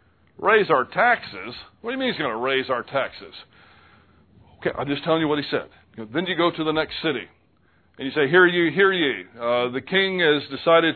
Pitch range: 115-150 Hz